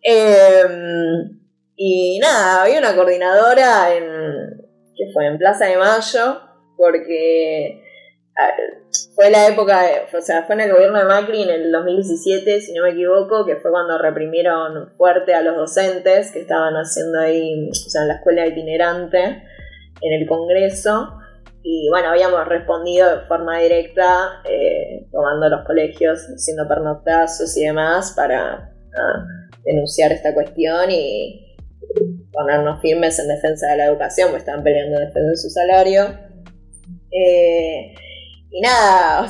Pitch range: 160-195 Hz